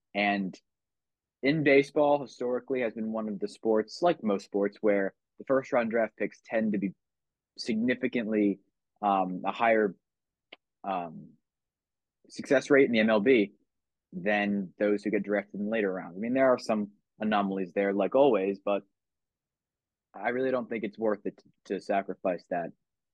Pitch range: 100-125 Hz